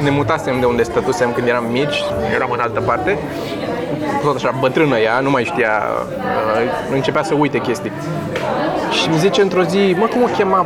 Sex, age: male, 20-39